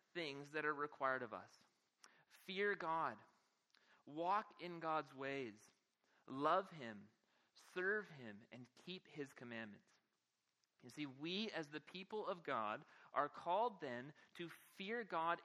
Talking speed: 130 wpm